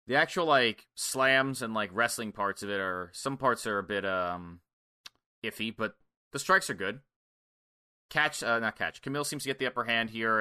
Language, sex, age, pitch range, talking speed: English, male, 20-39, 110-125 Hz, 200 wpm